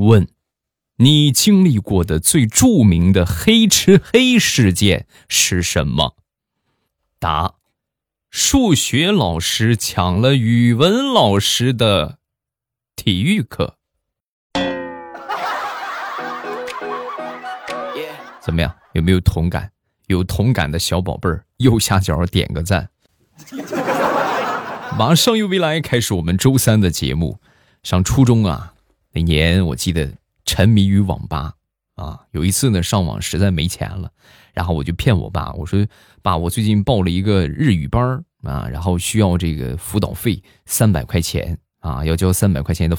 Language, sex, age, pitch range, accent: Chinese, male, 20-39, 85-115 Hz, native